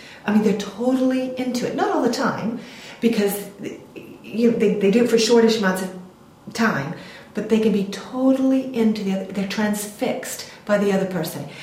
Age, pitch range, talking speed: 40-59, 190-235 Hz, 175 wpm